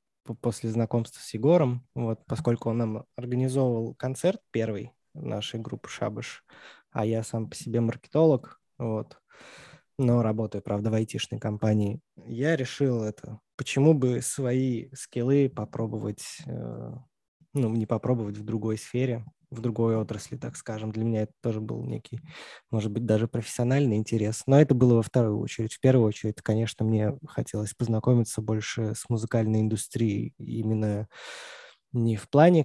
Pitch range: 110-125 Hz